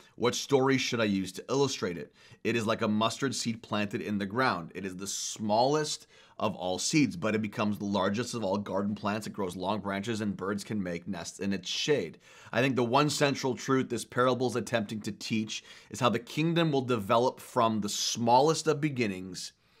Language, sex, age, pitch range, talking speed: English, male, 30-49, 110-135 Hz, 210 wpm